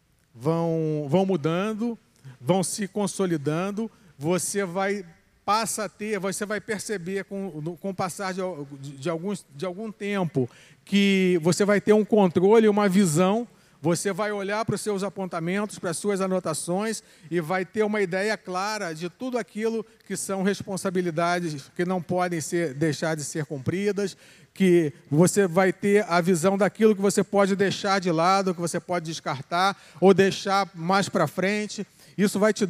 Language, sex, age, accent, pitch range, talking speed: Portuguese, male, 40-59, Brazilian, 175-215 Hz, 160 wpm